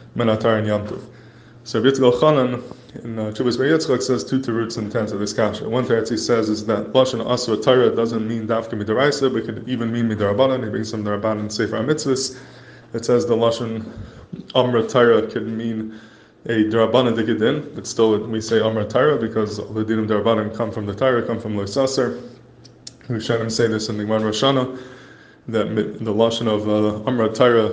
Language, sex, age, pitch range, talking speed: English, male, 20-39, 110-125 Hz, 180 wpm